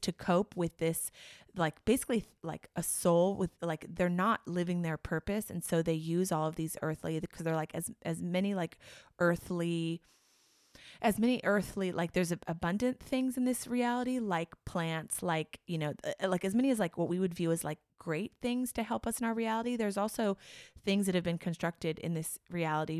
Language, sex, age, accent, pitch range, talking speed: English, female, 20-39, American, 165-190 Hz, 205 wpm